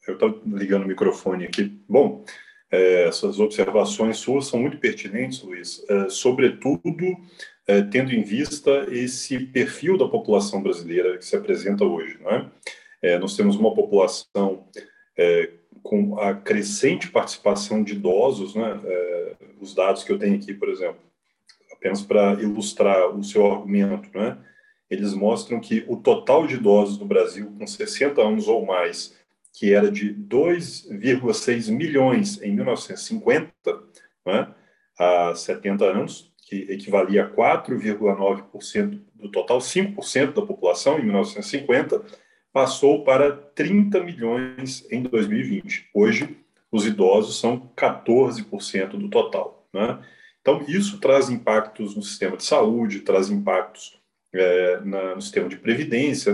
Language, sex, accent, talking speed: Portuguese, male, Brazilian, 135 wpm